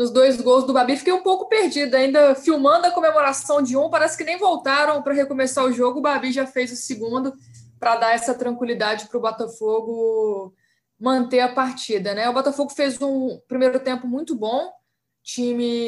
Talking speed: 190 wpm